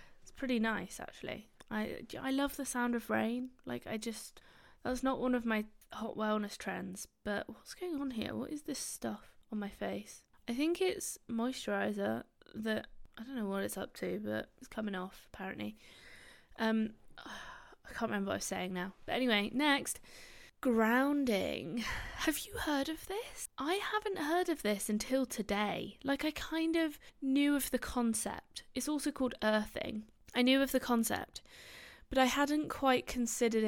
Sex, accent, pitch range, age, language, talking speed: female, British, 200-260 Hz, 20-39, English, 175 wpm